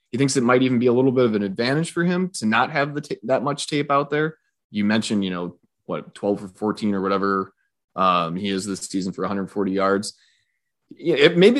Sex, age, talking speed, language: male, 30-49, 230 wpm, English